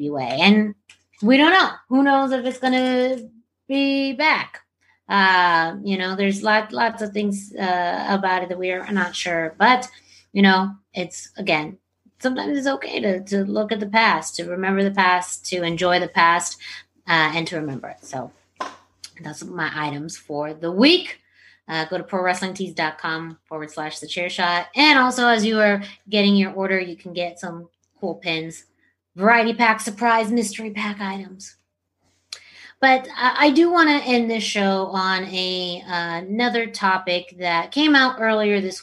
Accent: American